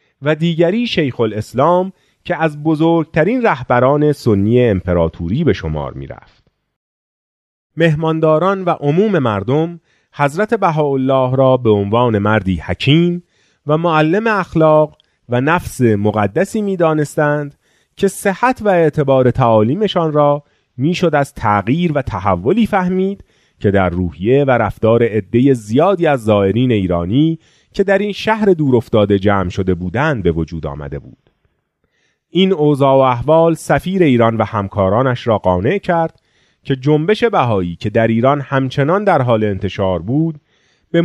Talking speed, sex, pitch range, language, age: 130 wpm, male, 110-160 Hz, Persian, 30-49